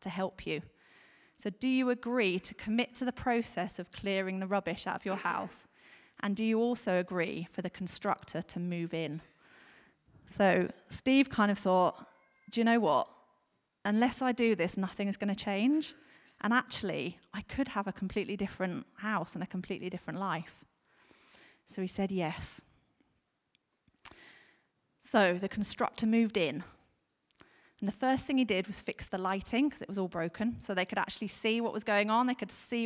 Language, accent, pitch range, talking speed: English, British, 185-230 Hz, 180 wpm